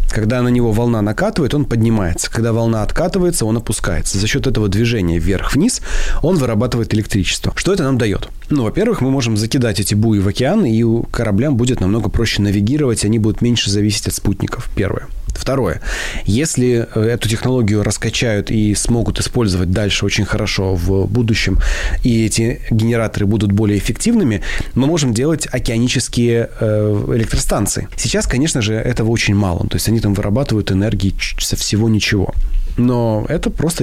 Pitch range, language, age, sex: 105-125 Hz, Russian, 30-49, male